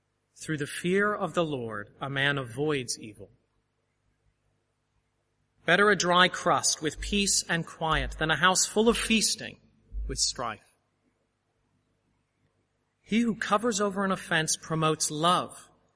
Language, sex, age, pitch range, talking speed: English, male, 30-49, 115-180 Hz, 130 wpm